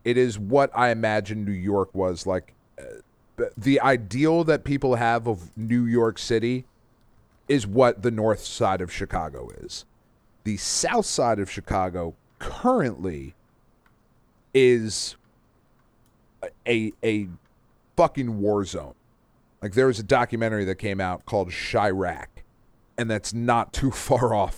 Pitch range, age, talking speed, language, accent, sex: 95-120 Hz, 30-49, 135 wpm, English, American, male